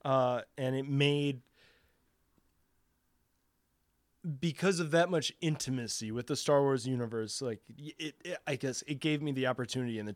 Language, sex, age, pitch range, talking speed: English, male, 20-39, 115-150 Hz, 155 wpm